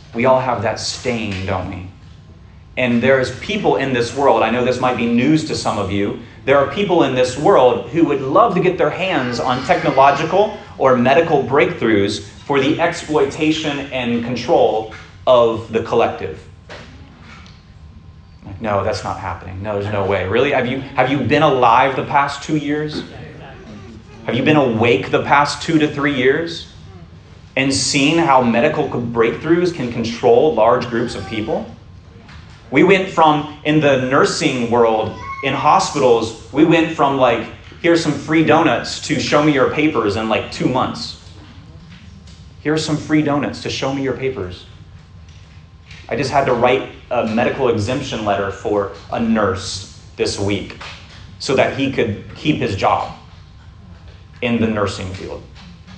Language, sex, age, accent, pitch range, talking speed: English, male, 30-49, American, 95-140 Hz, 160 wpm